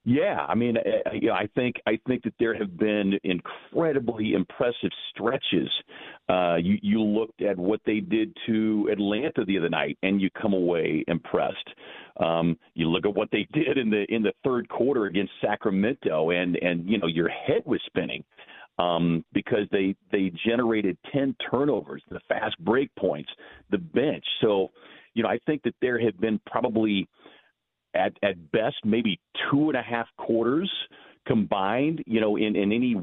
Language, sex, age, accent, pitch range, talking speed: English, male, 50-69, American, 95-115 Hz, 170 wpm